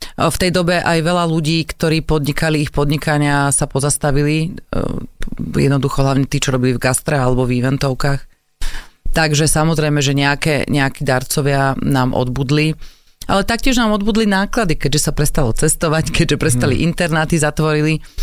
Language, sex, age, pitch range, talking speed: Slovak, female, 30-49, 135-160 Hz, 140 wpm